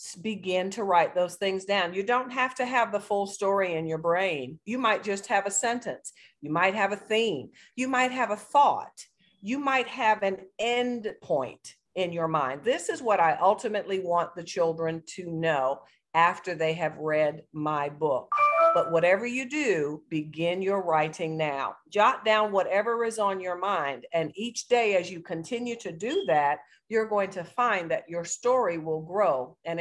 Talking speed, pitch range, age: 185 wpm, 165-230 Hz, 50-69